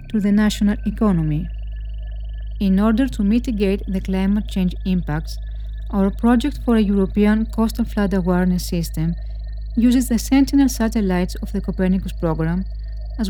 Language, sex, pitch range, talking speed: English, female, 165-220 Hz, 130 wpm